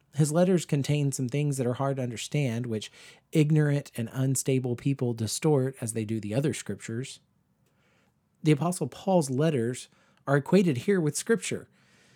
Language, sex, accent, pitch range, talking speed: English, male, American, 120-155 Hz, 155 wpm